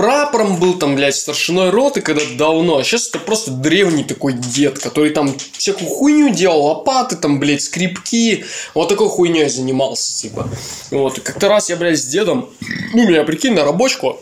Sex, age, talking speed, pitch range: male, 20-39, 180 wpm, 145-190 Hz